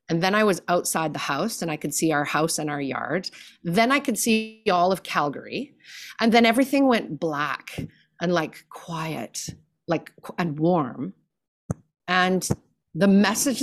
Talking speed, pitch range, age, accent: 165 wpm, 165-235 Hz, 30-49, American